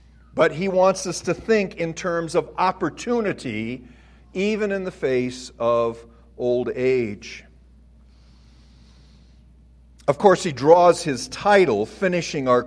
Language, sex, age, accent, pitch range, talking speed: English, male, 50-69, American, 115-190 Hz, 120 wpm